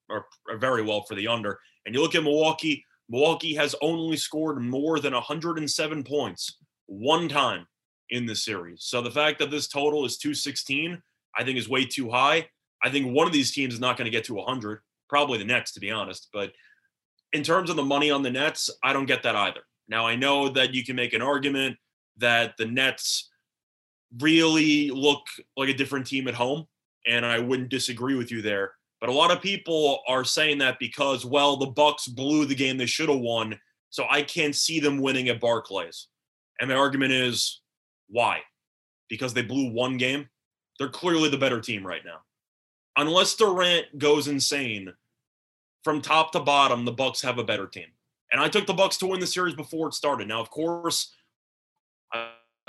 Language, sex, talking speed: English, male, 195 wpm